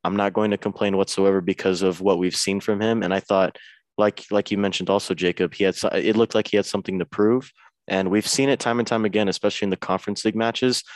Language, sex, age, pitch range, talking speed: English, male, 20-39, 95-110 Hz, 250 wpm